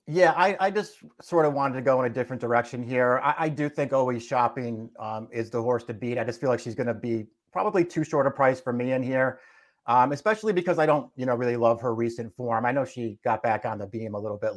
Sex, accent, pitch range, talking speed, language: male, American, 115-140 Hz, 270 wpm, English